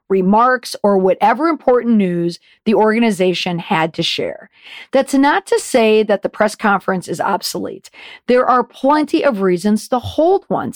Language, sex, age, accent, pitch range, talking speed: English, female, 50-69, American, 190-255 Hz, 155 wpm